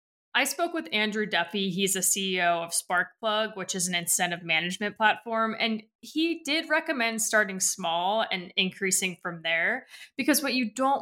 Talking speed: 165 wpm